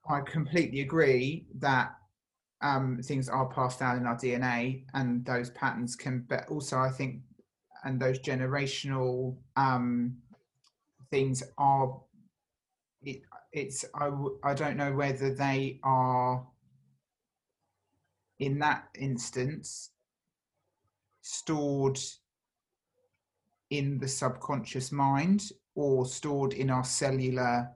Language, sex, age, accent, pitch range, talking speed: English, male, 30-49, British, 125-135 Hz, 105 wpm